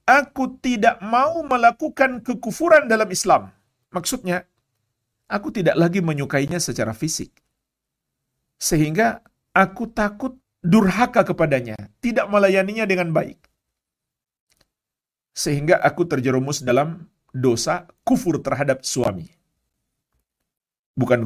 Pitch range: 120-200 Hz